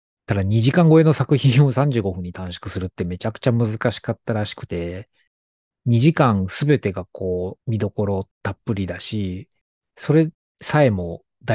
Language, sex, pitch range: Japanese, male, 95-125 Hz